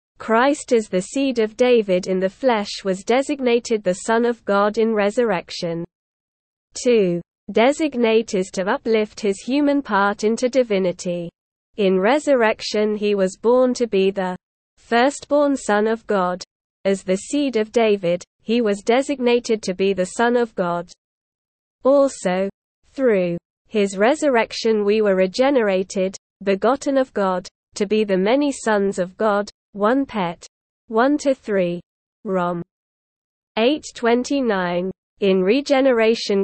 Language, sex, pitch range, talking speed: Filipino, female, 190-245 Hz, 130 wpm